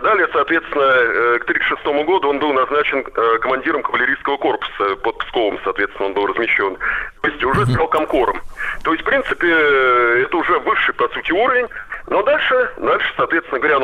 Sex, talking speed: male, 160 wpm